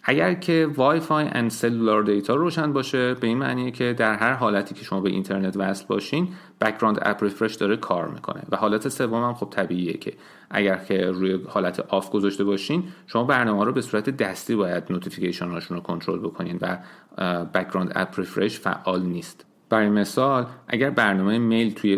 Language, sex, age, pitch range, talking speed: Persian, male, 40-59, 100-135 Hz, 180 wpm